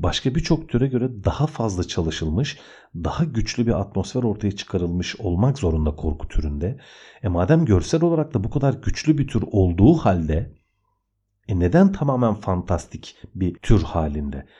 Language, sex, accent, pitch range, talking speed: Turkish, male, native, 85-125 Hz, 150 wpm